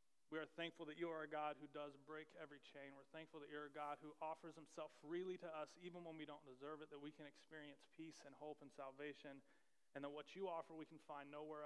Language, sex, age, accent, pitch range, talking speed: English, male, 30-49, American, 145-180 Hz, 250 wpm